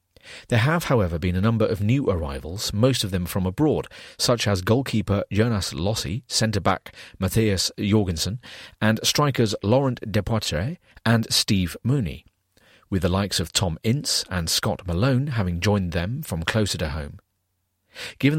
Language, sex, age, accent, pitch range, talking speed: English, male, 40-59, British, 90-120 Hz, 150 wpm